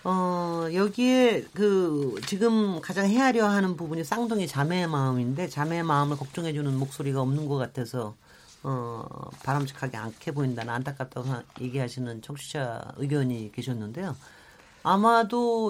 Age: 40-59